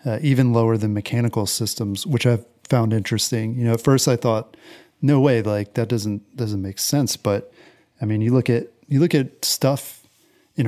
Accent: American